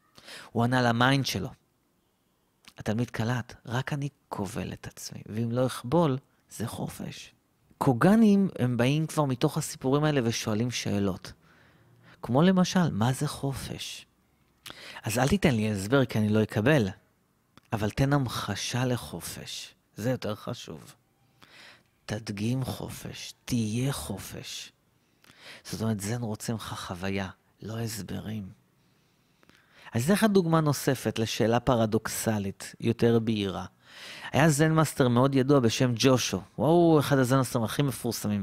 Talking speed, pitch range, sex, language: 120 wpm, 110-160 Hz, male, Hebrew